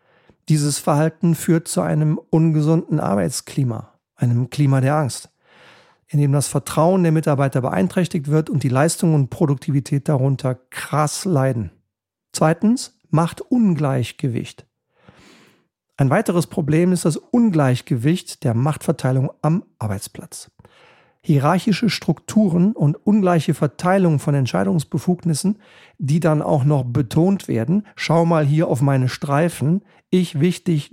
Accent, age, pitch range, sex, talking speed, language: German, 50-69, 145-180 Hz, male, 120 wpm, German